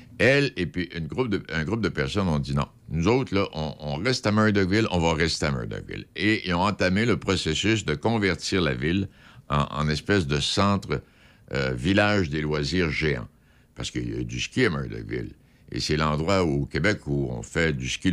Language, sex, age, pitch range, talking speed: French, male, 60-79, 75-105 Hz, 200 wpm